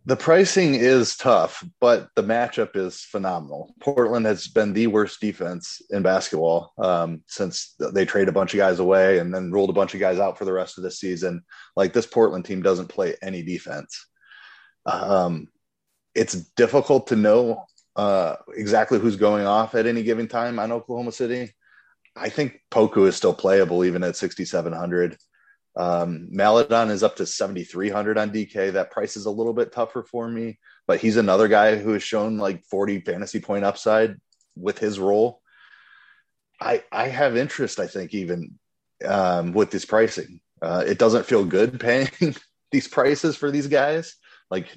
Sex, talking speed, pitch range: male, 175 wpm, 95-125 Hz